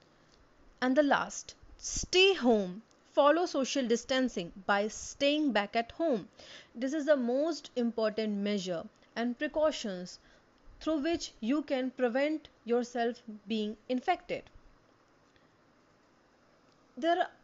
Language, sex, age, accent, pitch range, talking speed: Hindi, female, 30-49, native, 220-280 Hz, 105 wpm